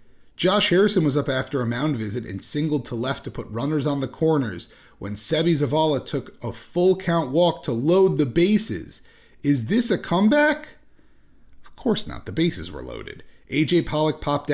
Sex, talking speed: male, 180 wpm